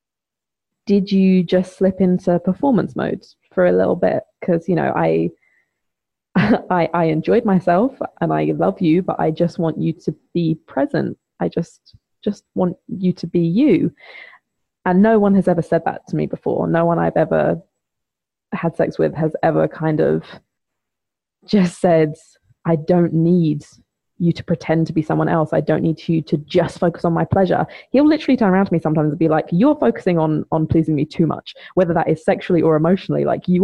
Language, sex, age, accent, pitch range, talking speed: English, female, 20-39, British, 160-190 Hz, 195 wpm